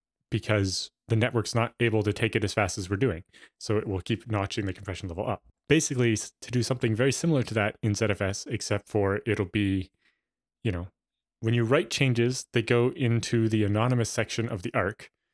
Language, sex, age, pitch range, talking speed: English, male, 20-39, 100-120 Hz, 200 wpm